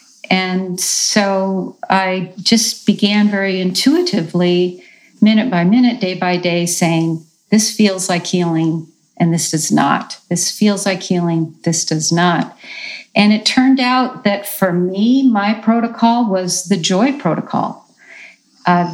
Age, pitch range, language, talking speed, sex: 50-69, 175-215 Hz, English, 135 wpm, female